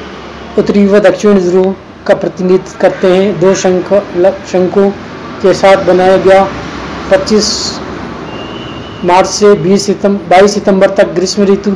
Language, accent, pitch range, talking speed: Hindi, native, 185-205 Hz, 60 wpm